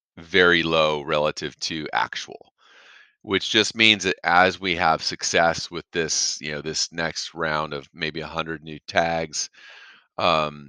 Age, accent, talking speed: 30-49, American, 150 wpm